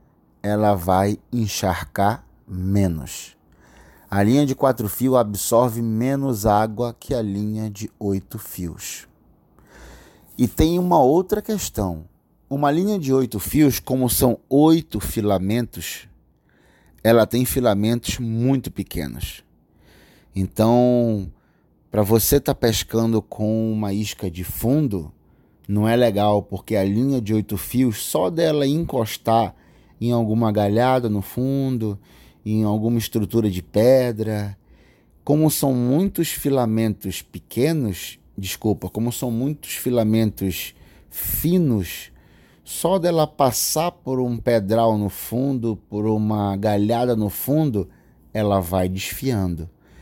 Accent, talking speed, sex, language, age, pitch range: Brazilian, 115 wpm, male, Portuguese, 30-49, 95-125 Hz